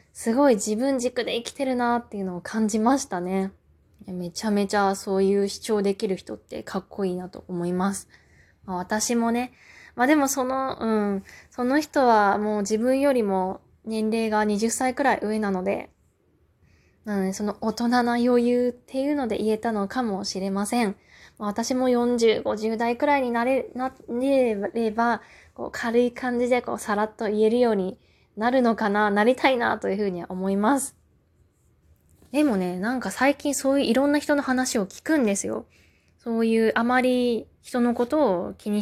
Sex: female